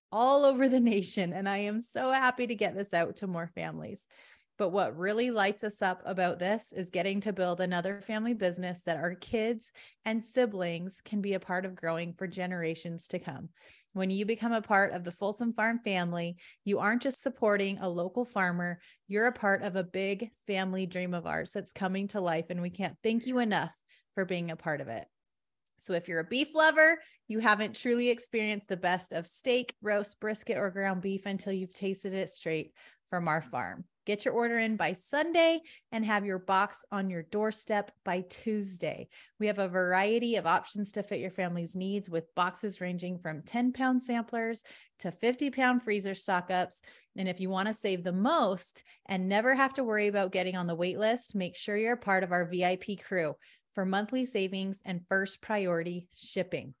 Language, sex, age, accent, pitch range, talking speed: English, female, 30-49, American, 180-220 Hz, 200 wpm